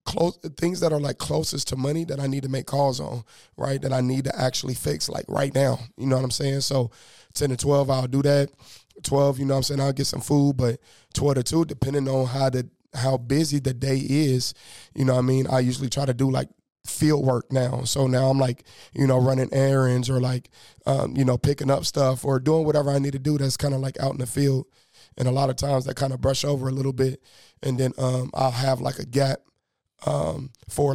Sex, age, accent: male, 20-39, American